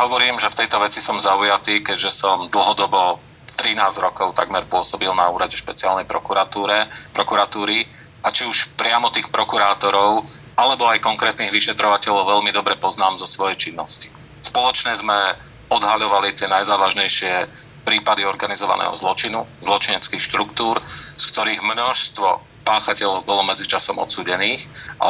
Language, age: Slovak, 40-59